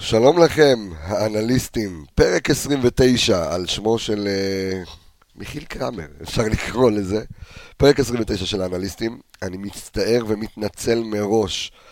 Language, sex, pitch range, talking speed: Hebrew, male, 100-125 Hz, 105 wpm